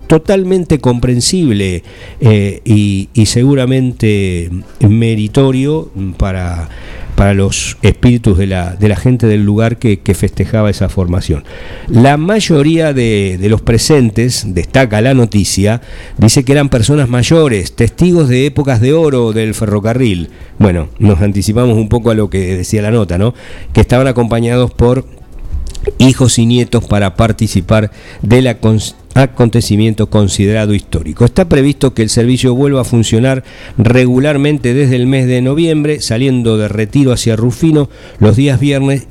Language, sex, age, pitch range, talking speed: English, male, 50-69, 105-130 Hz, 140 wpm